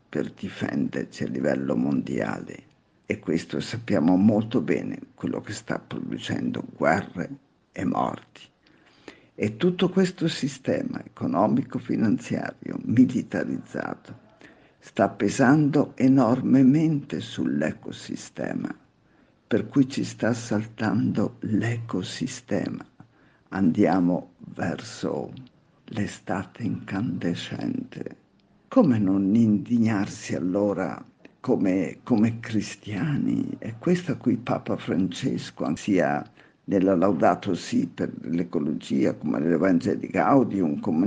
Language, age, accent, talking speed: Italian, 50-69, native, 90 wpm